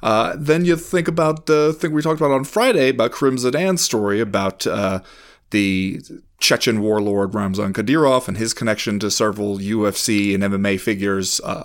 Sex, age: male, 30-49